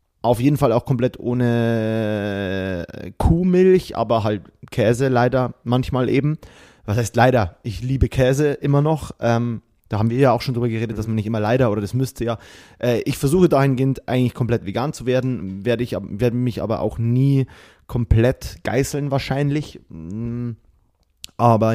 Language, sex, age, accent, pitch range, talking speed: German, male, 30-49, German, 110-135 Hz, 165 wpm